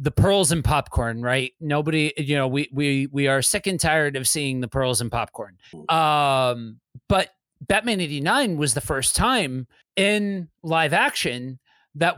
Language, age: English, 30-49